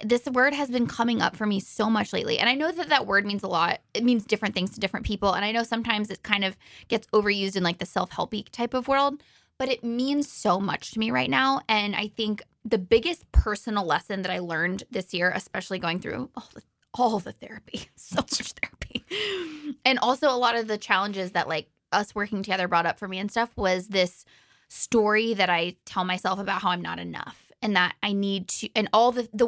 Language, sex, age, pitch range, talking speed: English, female, 20-39, 190-240 Hz, 235 wpm